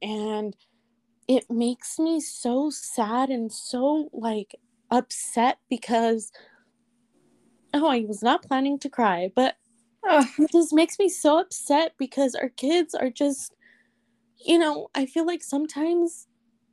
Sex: female